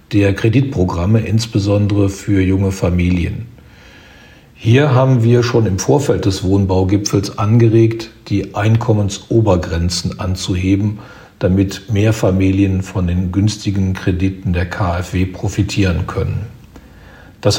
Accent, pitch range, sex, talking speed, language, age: German, 95-115 Hz, male, 100 wpm, German, 50-69